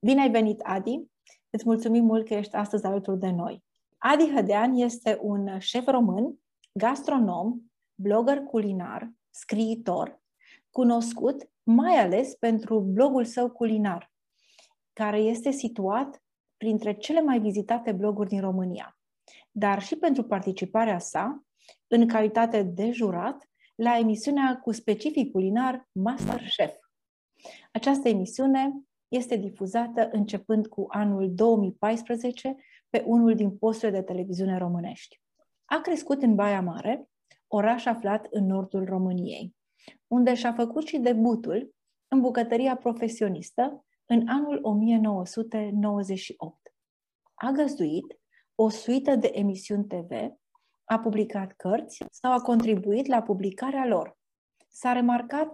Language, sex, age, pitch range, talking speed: Romanian, female, 30-49, 205-255 Hz, 120 wpm